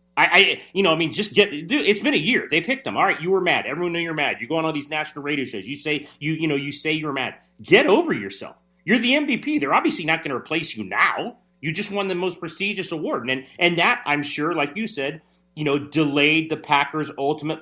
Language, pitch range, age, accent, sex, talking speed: English, 115-165 Hz, 30-49, American, male, 270 wpm